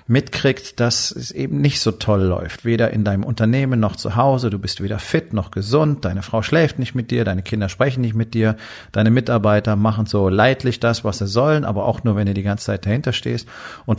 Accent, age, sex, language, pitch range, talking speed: German, 40-59, male, German, 100-115 Hz, 225 wpm